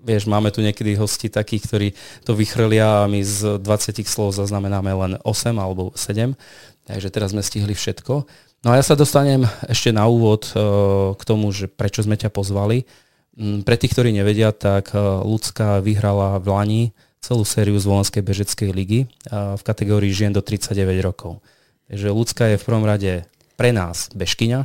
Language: Slovak